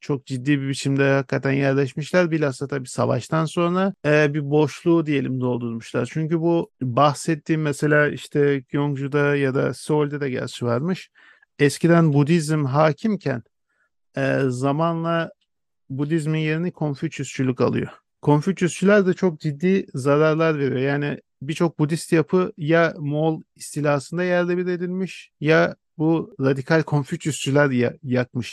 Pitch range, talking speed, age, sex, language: 135-170 Hz, 120 wpm, 50-69, male, Turkish